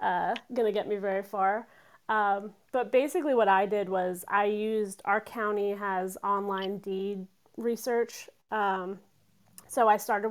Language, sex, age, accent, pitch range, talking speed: English, female, 30-49, American, 195-225 Hz, 145 wpm